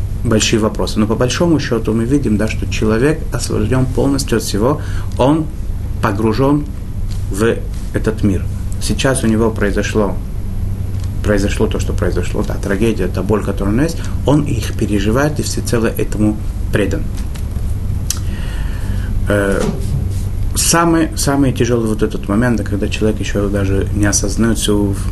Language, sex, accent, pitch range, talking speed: Russian, male, native, 95-110 Hz, 130 wpm